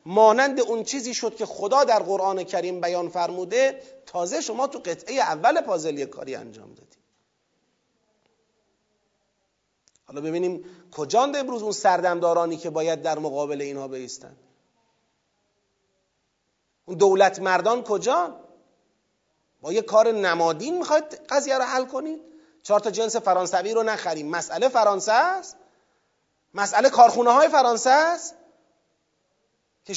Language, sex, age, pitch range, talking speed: Persian, male, 30-49, 195-260 Hz, 120 wpm